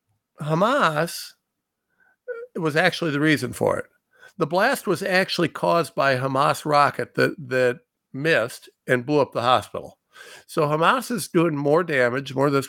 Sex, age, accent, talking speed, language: male, 50-69, American, 150 wpm, English